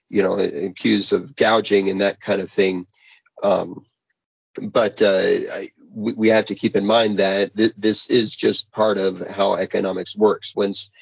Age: 40-59